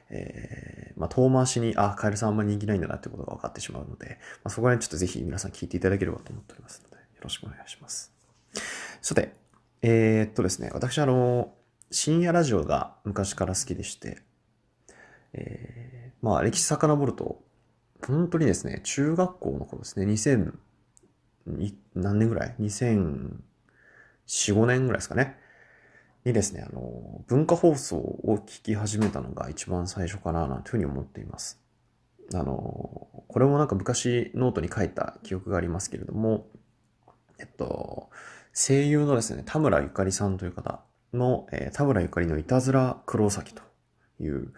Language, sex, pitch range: Japanese, male, 95-125 Hz